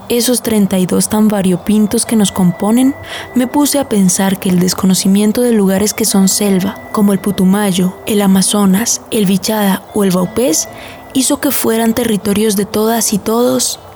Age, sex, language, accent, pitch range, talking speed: 20-39, female, Spanish, Colombian, 195-225 Hz, 160 wpm